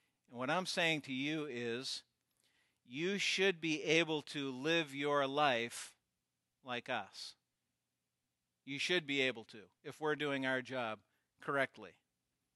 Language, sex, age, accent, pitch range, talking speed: English, male, 50-69, American, 120-185 Hz, 135 wpm